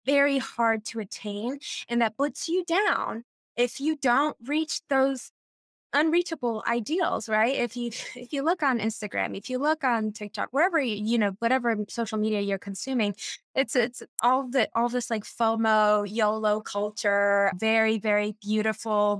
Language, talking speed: English, 160 wpm